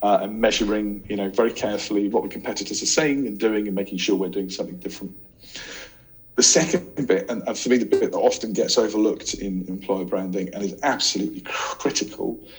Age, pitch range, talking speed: 40-59, 100-115 Hz, 190 wpm